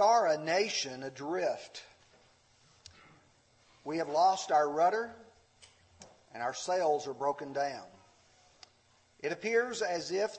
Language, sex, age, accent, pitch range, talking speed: English, male, 40-59, American, 140-215 Hz, 110 wpm